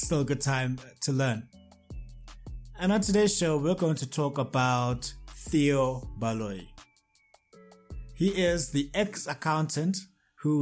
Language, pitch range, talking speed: English, 125-155 Hz, 125 wpm